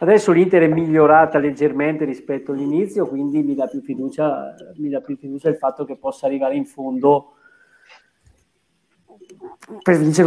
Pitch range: 140-170 Hz